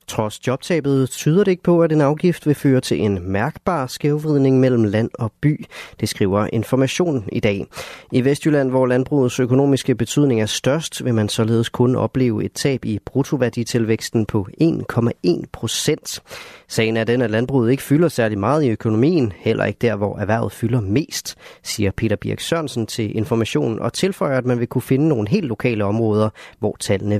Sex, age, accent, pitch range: male, 30-49, native, 110-145 Hz